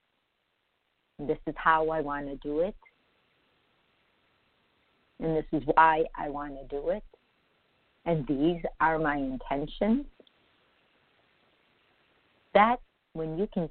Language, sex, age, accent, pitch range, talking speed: English, female, 50-69, American, 155-215 Hz, 115 wpm